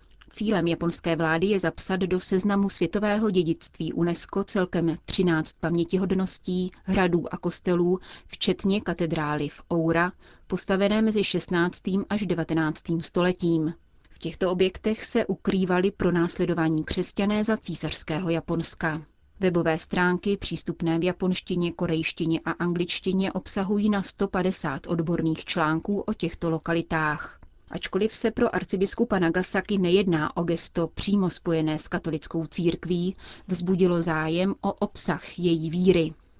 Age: 30-49